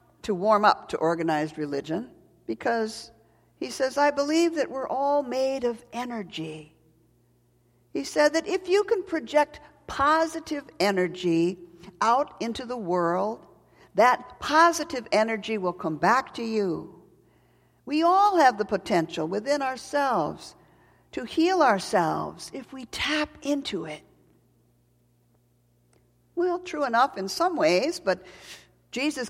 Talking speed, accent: 125 wpm, American